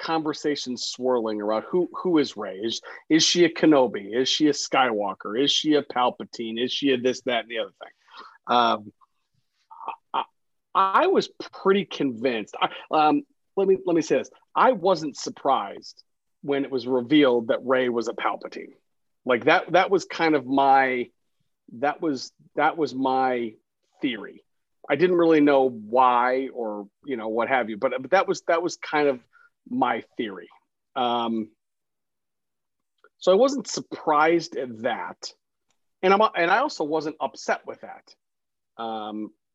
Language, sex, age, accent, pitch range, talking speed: English, male, 40-59, American, 120-175 Hz, 160 wpm